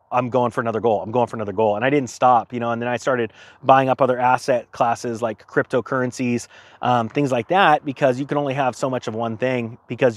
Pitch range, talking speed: 120-145 Hz, 250 wpm